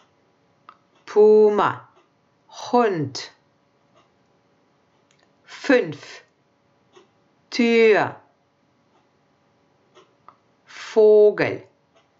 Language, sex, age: German, female, 50-69